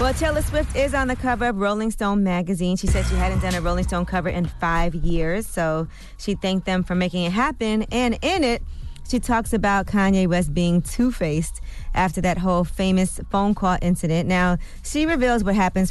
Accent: American